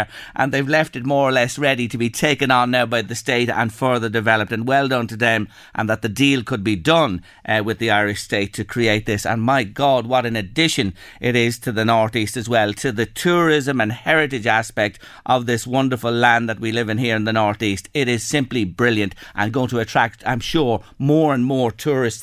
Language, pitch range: English, 115-160 Hz